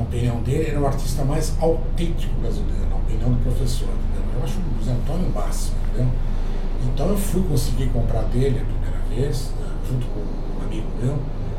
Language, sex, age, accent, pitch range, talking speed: Portuguese, male, 60-79, Brazilian, 120-160 Hz, 175 wpm